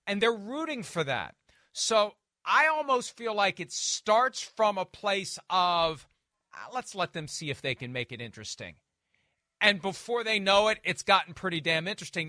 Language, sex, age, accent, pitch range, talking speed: English, male, 40-59, American, 165-225 Hz, 180 wpm